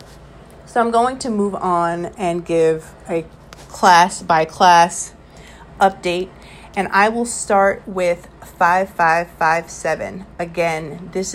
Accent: American